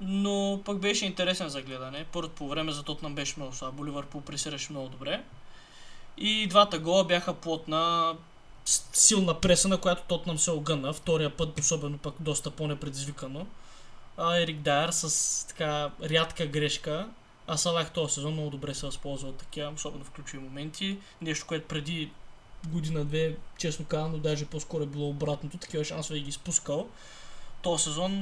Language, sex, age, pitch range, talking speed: Bulgarian, male, 20-39, 150-175 Hz, 155 wpm